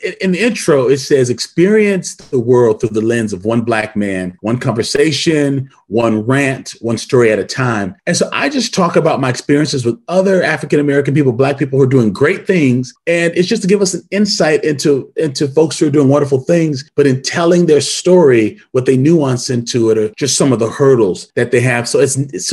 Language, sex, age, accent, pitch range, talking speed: English, male, 30-49, American, 115-155 Hz, 215 wpm